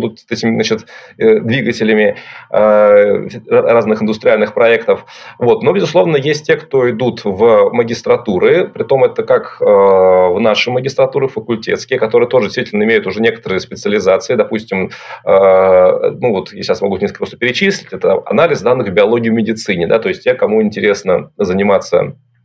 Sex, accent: male, native